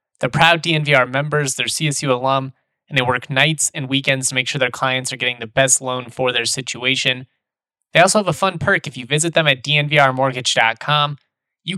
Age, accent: 20-39, American